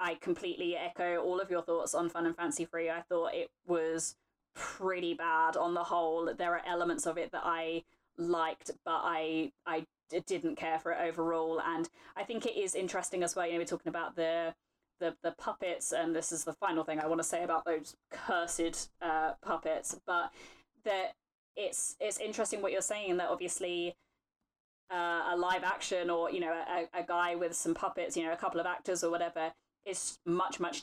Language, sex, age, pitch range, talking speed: English, female, 20-39, 165-190 Hz, 200 wpm